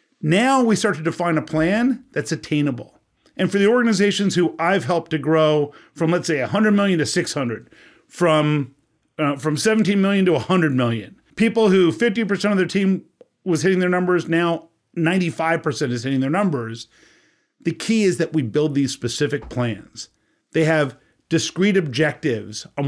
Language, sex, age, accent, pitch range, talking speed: English, male, 40-59, American, 140-190 Hz, 165 wpm